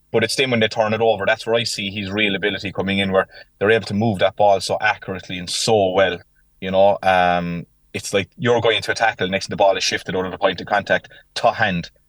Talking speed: 260 wpm